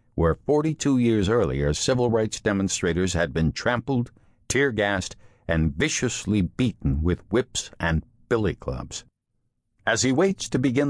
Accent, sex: American, male